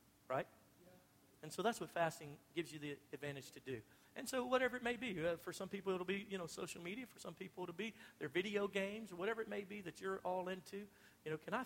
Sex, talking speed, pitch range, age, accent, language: male, 245 wpm, 155-205 Hz, 50-69, American, English